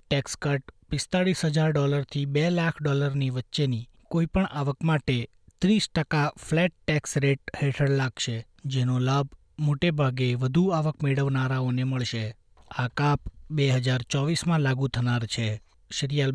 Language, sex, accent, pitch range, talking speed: Gujarati, male, native, 125-150 Hz, 125 wpm